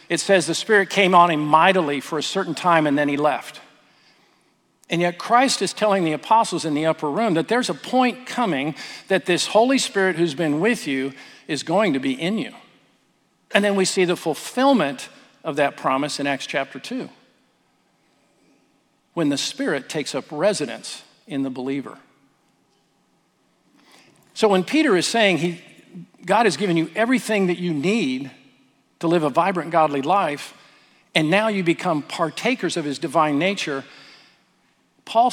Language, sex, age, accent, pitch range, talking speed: English, male, 50-69, American, 155-210 Hz, 165 wpm